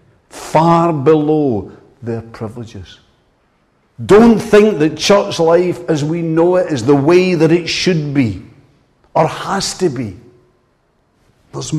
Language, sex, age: English, male, 60-79